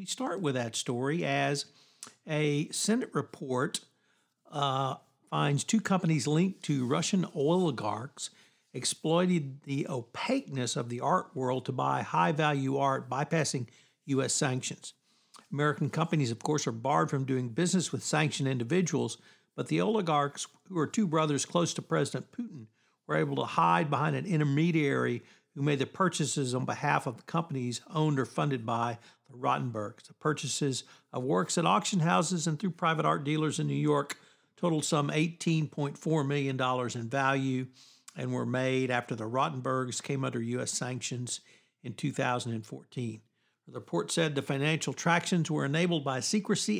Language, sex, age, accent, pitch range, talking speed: English, male, 60-79, American, 130-160 Hz, 150 wpm